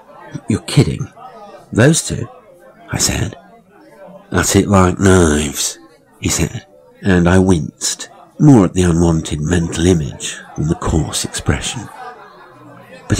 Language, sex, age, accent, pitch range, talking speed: English, male, 50-69, British, 80-95 Hz, 120 wpm